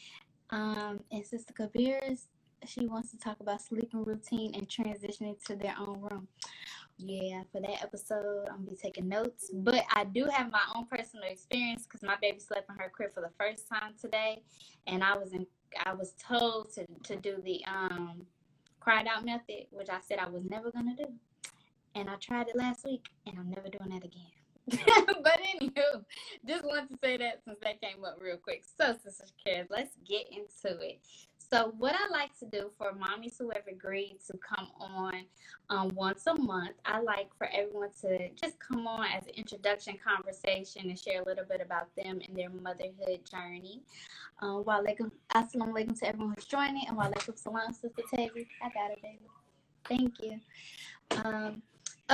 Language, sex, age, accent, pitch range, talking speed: English, female, 10-29, American, 195-235 Hz, 190 wpm